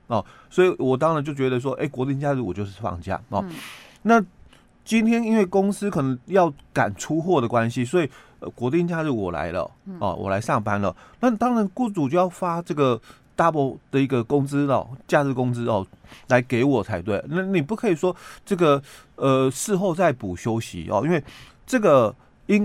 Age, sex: 30-49, male